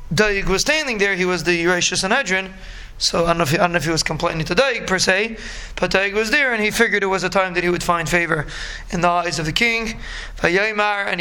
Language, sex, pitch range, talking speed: English, male, 175-205 Hz, 260 wpm